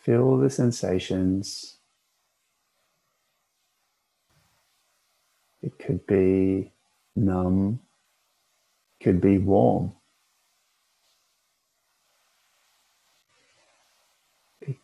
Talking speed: 50 wpm